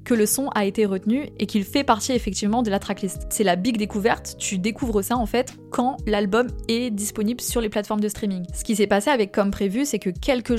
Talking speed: 240 wpm